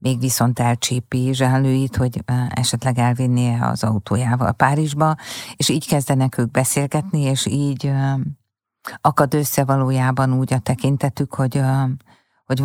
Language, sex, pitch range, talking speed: Hungarian, female, 125-145 Hz, 120 wpm